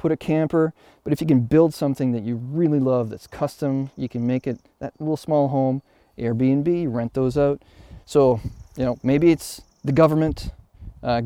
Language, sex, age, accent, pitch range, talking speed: English, male, 30-49, American, 120-145 Hz, 185 wpm